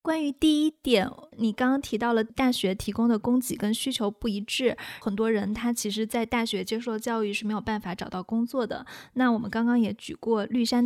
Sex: female